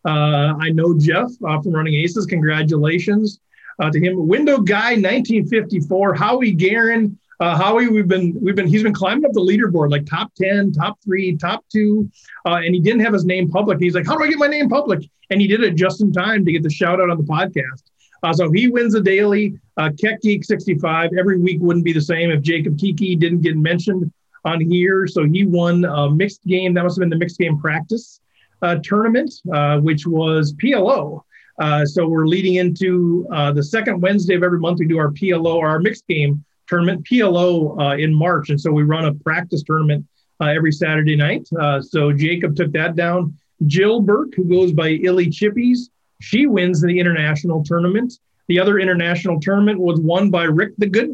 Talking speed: 205 wpm